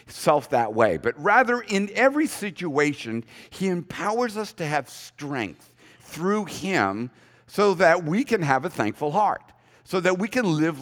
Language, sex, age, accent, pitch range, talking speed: English, male, 50-69, American, 145-195 Hz, 160 wpm